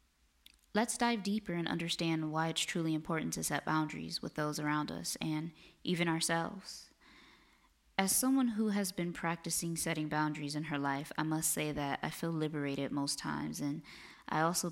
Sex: female